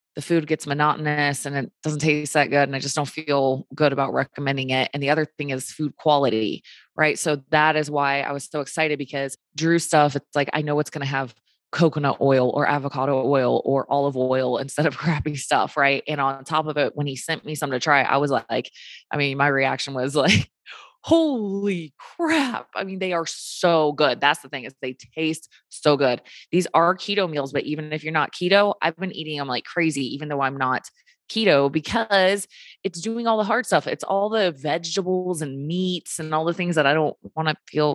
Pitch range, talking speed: 140-165 Hz, 220 wpm